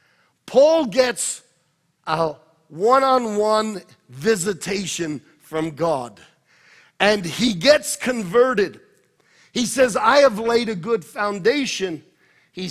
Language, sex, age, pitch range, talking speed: English, male, 50-69, 200-270 Hz, 95 wpm